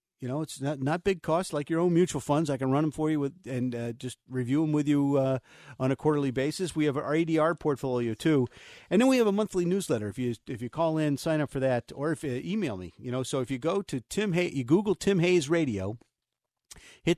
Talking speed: 260 wpm